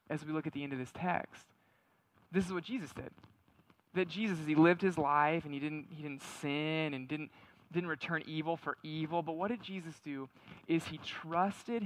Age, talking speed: 20-39, 205 wpm